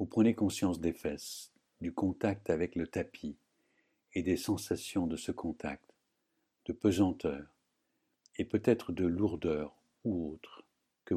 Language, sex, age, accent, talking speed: French, male, 60-79, French, 135 wpm